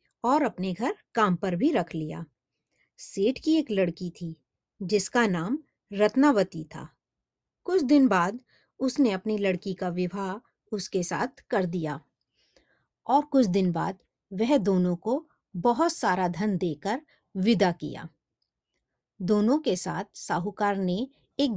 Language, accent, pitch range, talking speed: Hindi, native, 180-260 Hz, 135 wpm